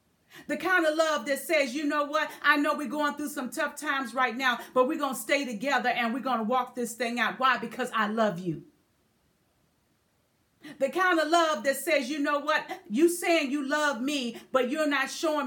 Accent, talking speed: American, 215 wpm